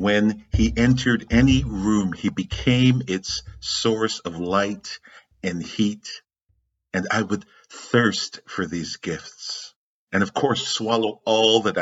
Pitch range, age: 95-115 Hz, 50-69